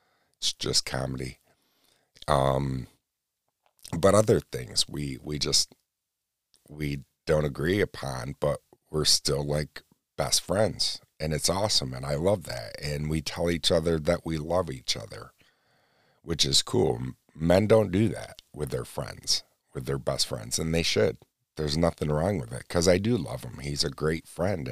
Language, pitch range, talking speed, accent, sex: English, 70-80 Hz, 165 wpm, American, male